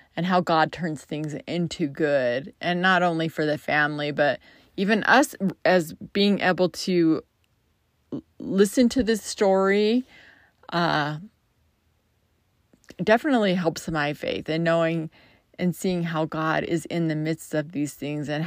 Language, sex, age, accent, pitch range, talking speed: English, female, 30-49, American, 155-195 Hz, 140 wpm